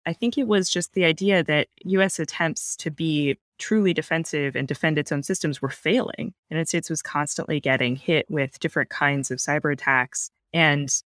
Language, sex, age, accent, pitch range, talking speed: English, female, 20-39, American, 140-170 Hz, 190 wpm